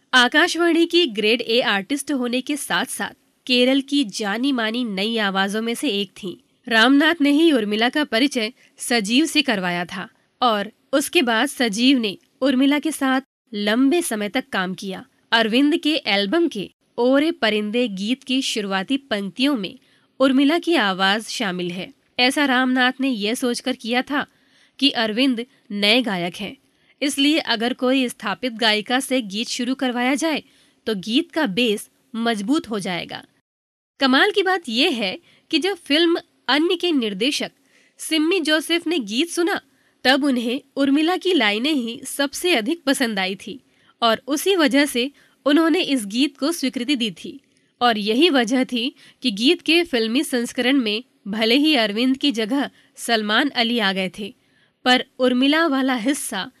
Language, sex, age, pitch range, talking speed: Hindi, female, 20-39, 225-290 Hz, 160 wpm